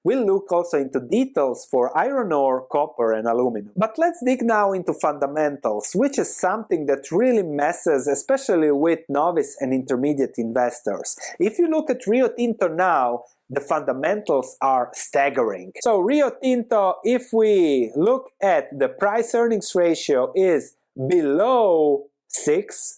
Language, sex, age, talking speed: English, male, 30-49, 140 wpm